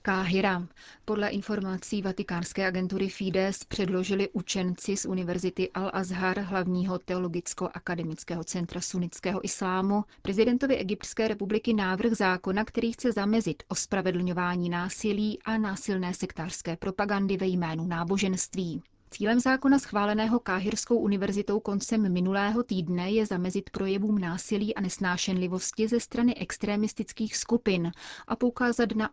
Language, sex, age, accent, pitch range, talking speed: Czech, female, 30-49, native, 180-210 Hz, 110 wpm